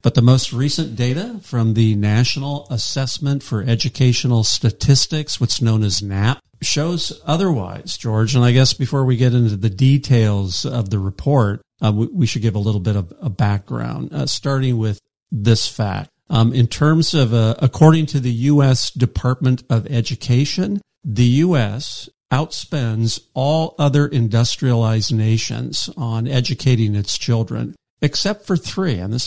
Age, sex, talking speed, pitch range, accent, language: 50-69, male, 155 wpm, 110-140 Hz, American, English